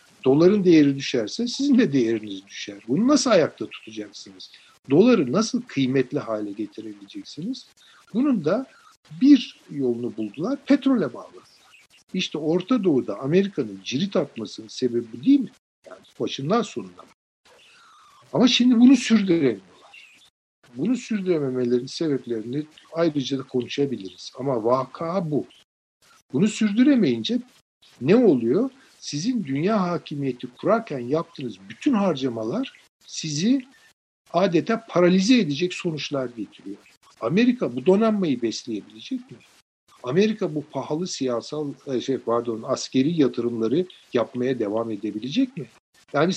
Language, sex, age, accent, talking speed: Turkish, male, 60-79, native, 105 wpm